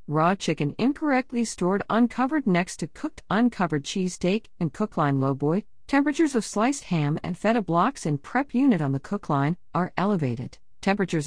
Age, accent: 50-69, American